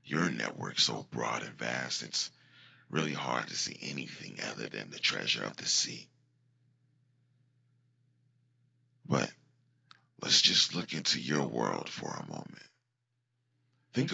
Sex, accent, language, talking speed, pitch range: male, American, English, 125 wpm, 125-130 Hz